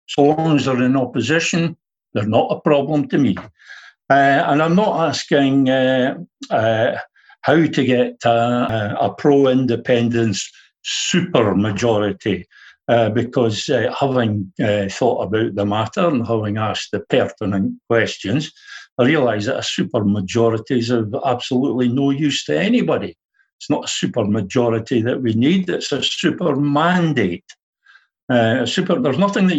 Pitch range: 105-150 Hz